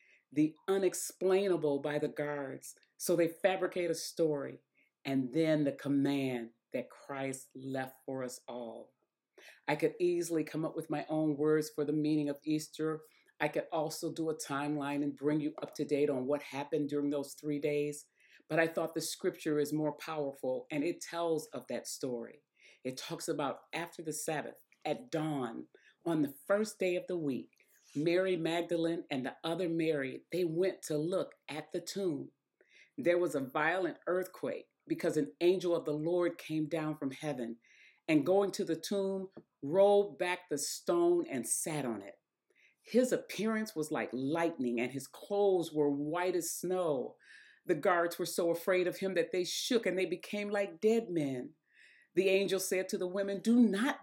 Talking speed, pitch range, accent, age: 175 wpm, 150-185 Hz, American, 40-59